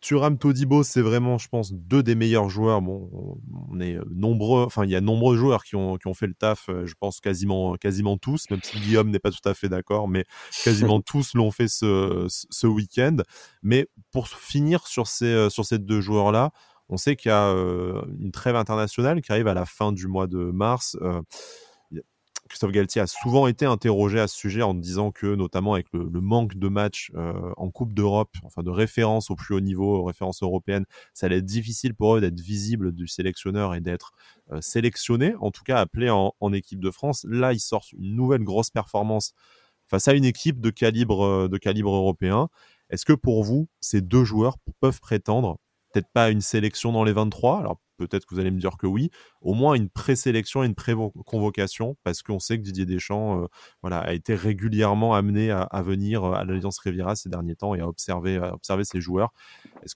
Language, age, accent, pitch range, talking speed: French, 20-39, French, 95-115 Hz, 200 wpm